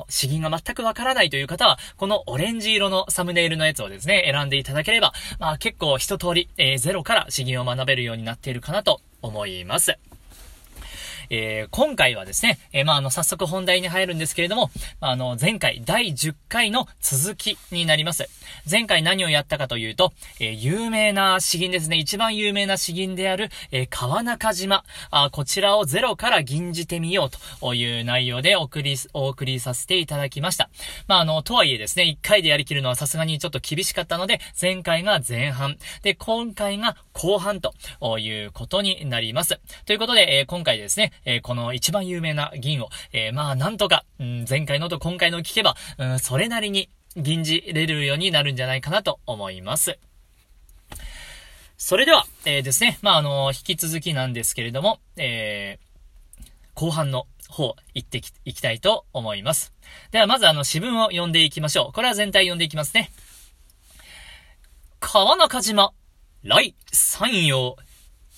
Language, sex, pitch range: Japanese, male, 125-190 Hz